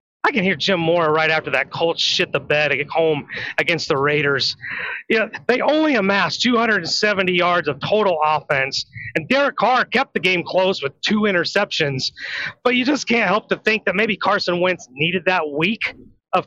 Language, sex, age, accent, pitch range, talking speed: English, male, 30-49, American, 165-215 Hz, 185 wpm